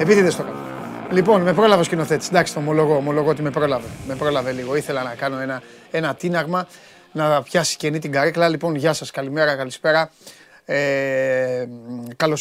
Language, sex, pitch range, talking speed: Greek, male, 130-155 Hz, 185 wpm